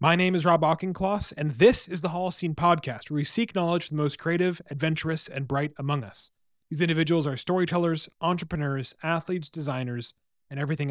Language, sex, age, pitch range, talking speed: English, male, 30-49, 130-165 Hz, 180 wpm